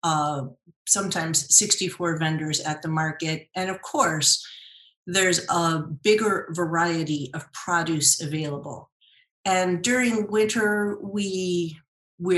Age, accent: 40-59, American